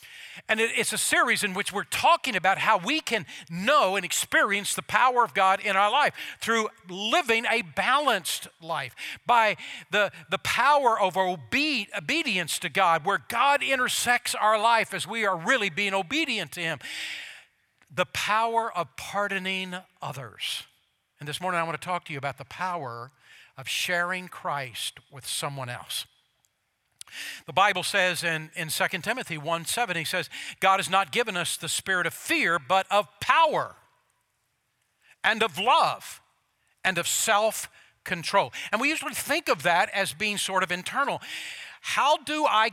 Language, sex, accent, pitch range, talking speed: English, male, American, 180-230 Hz, 160 wpm